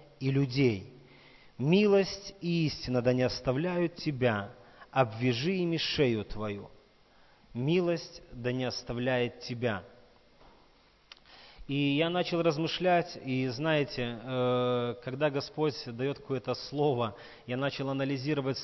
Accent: native